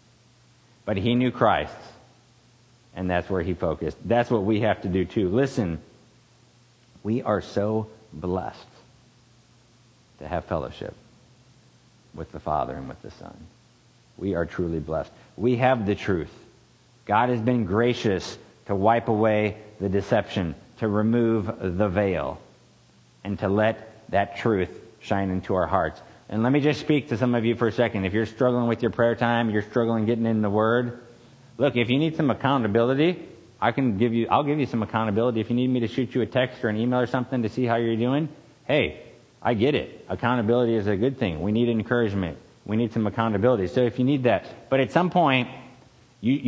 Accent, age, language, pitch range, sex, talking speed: American, 50-69, English, 105-125 Hz, male, 190 wpm